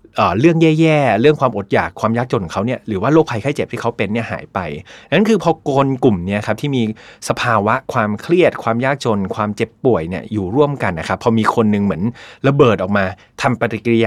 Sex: male